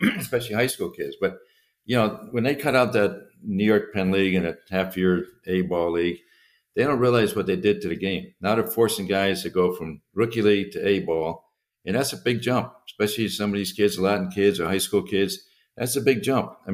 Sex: male